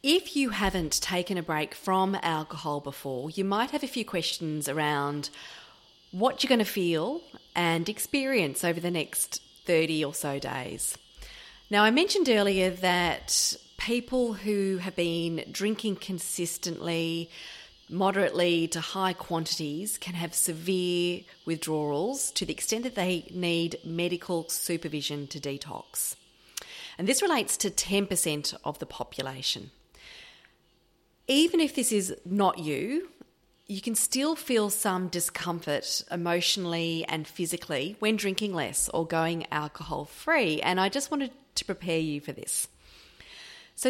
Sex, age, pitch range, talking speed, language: female, 30-49, 165-220 Hz, 135 wpm, English